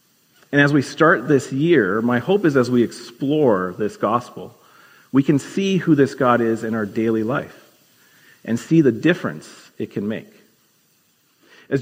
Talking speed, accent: 170 wpm, American